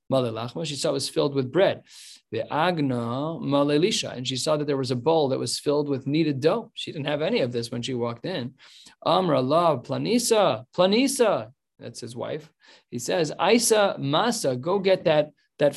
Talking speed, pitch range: 190 wpm, 130-155 Hz